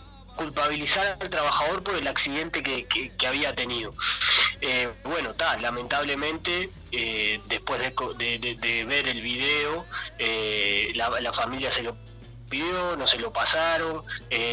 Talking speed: 135 wpm